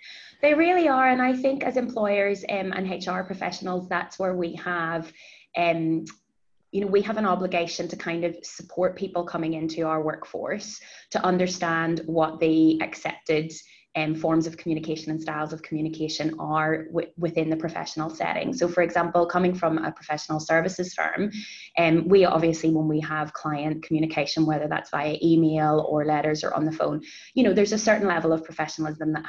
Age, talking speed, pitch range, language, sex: 20-39, 180 wpm, 155-180 Hz, English, female